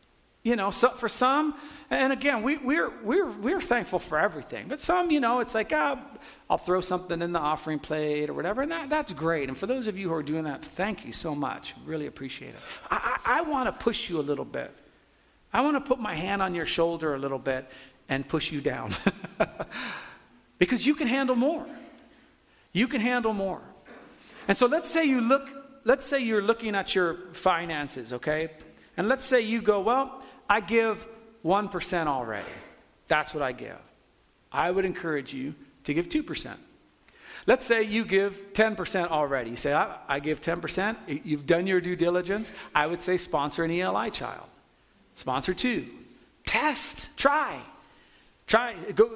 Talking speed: 185 wpm